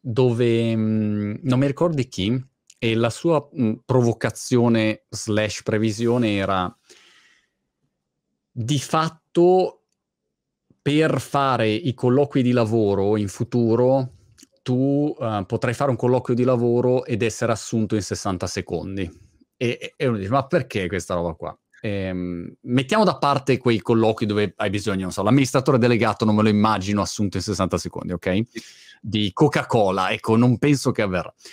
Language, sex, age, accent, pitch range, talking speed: Italian, male, 30-49, native, 105-130 Hz, 145 wpm